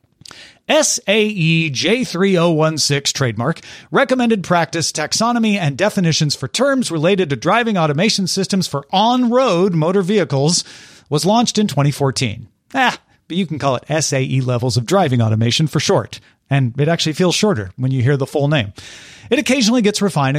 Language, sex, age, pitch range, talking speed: English, male, 40-59, 135-190 Hz, 150 wpm